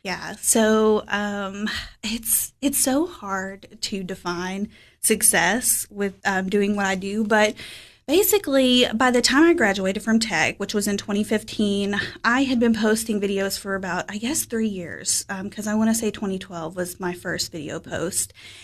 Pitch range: 195-225 Hz